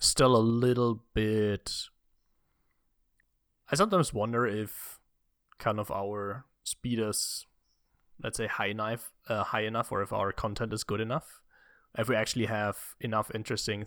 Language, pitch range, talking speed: English, 105-125 Hz, 145 wpm